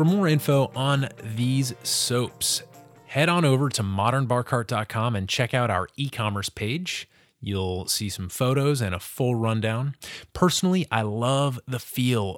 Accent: American